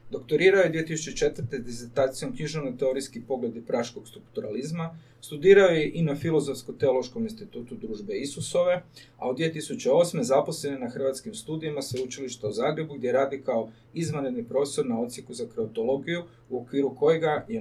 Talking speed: 135 wpm